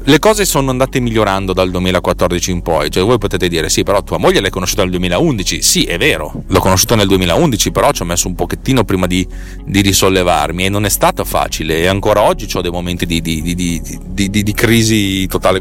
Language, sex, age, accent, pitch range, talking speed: Italian, male, 30-49, native, 90-125 Hz, 210 wpm